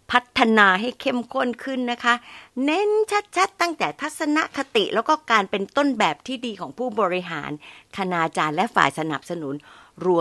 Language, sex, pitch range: Thai, female, 165-240 Hz